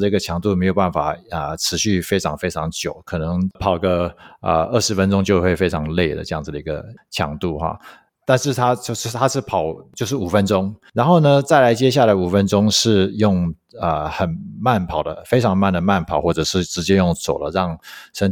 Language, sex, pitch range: Chinese, male, 85-115 Hz